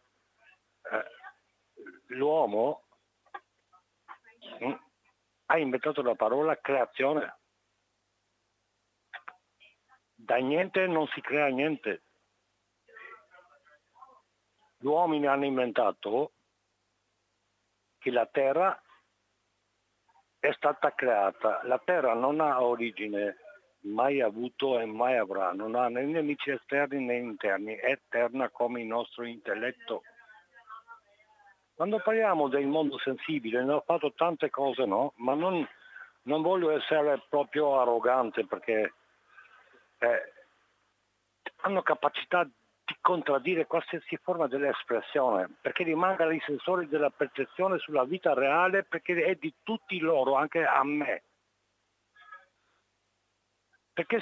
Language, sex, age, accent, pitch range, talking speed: Italian, male, 60-79, native, 120-165 Hz, 100 wpm